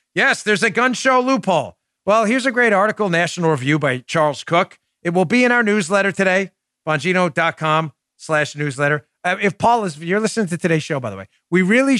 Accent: American